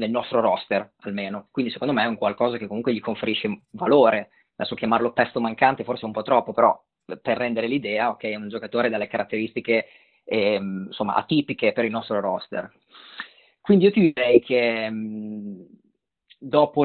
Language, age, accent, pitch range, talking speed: Italian, 20-39, native, 110-130 Hz, 170 wpm